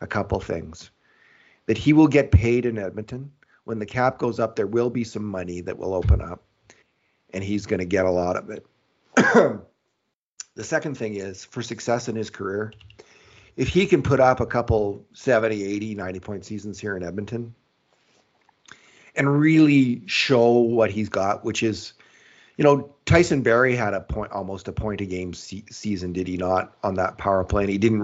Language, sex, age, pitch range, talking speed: English, male, 40-59, 100-130 Hz, 185 wpm